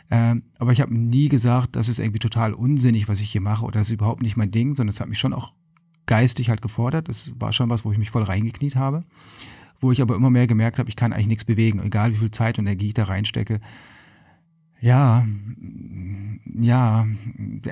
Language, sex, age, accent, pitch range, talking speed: German, male, 40-59, German, 105-125 Hz, 220 wpm